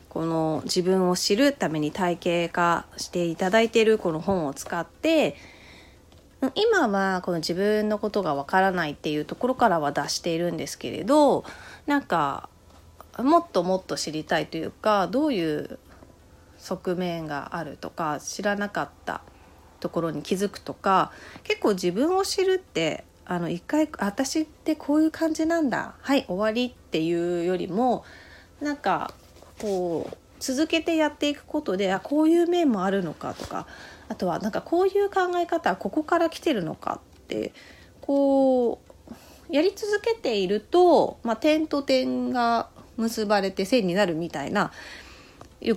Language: Japanese